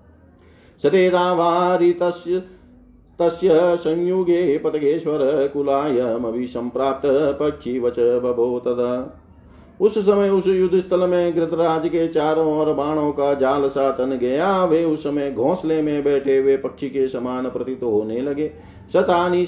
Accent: native